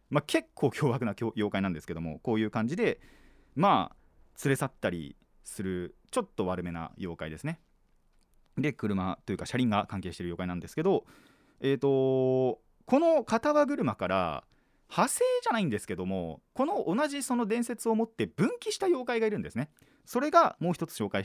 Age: 30-49